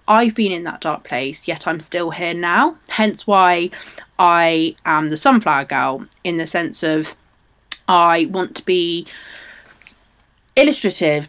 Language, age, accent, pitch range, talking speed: English, 20-39, British, 160-220 Hz, 145 wpm